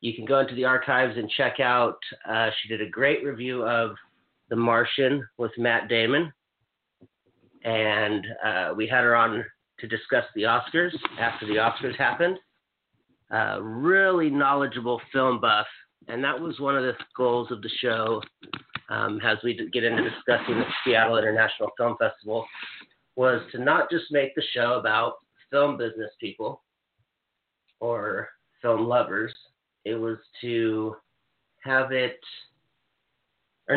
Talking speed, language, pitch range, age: 145 wpm, English, 115-130 Hz, 40-59